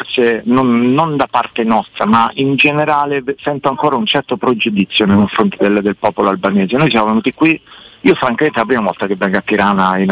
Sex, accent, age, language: male, native, 40-59, Italian